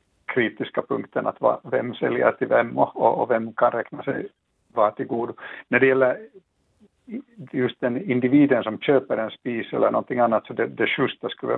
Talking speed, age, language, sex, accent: 170 wpm, 60-79, Swedish, male, Finnish